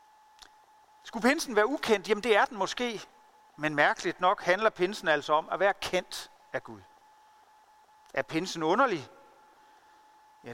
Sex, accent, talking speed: male, native, 140 wpm